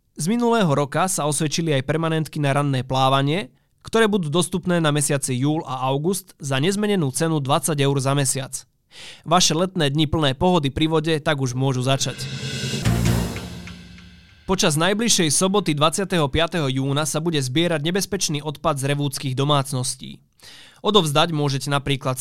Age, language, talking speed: 20-39, Slovak, 140 wpm